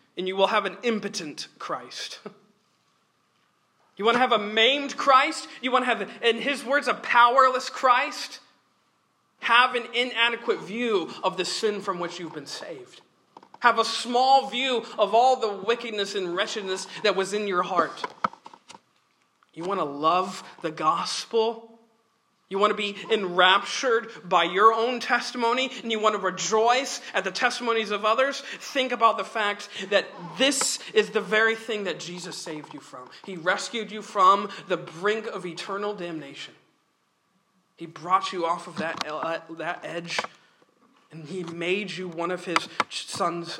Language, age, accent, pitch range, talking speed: English, 40-59, American, 180-235 Hz, 160 wpm